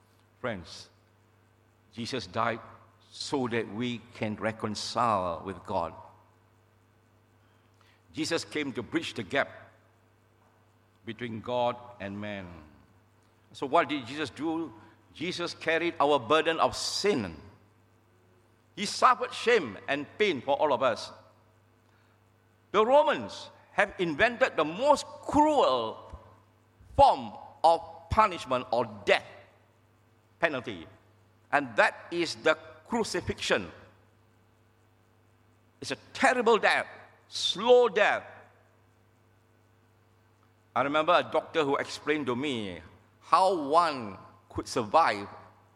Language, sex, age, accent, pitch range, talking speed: English, male, 60-79, Malaysian, 110-150 Hz, 100 wpm